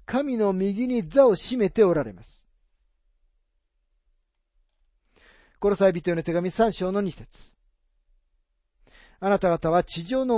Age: 40-59